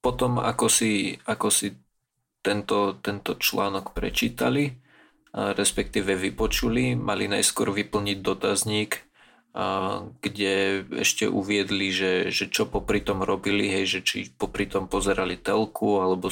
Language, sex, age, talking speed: Slovak, male, 20-39, 105 wpm